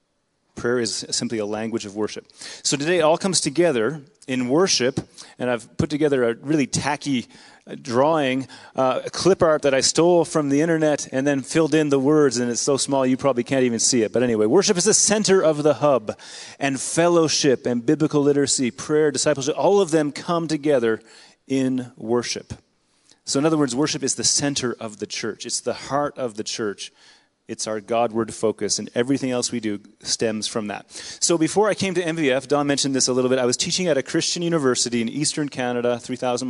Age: 30-49